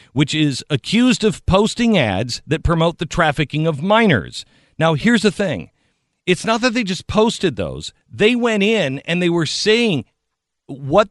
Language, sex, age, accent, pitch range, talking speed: English, male, 50-69, American, 125-175 Hz, 165 wpm